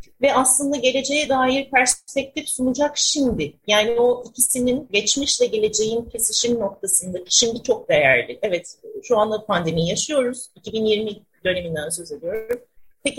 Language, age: Turkish, 40-59